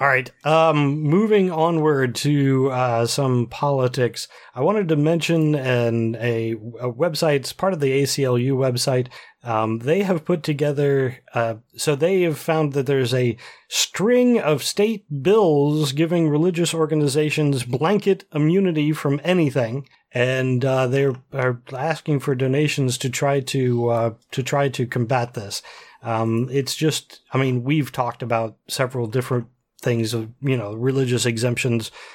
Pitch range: 125-155 Hz